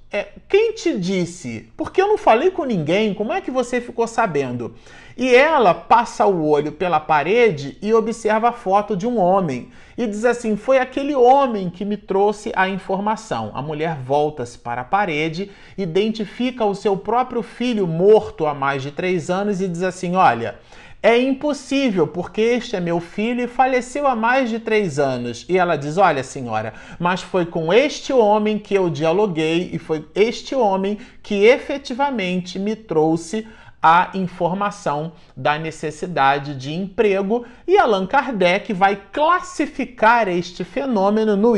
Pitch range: 170-235 Hz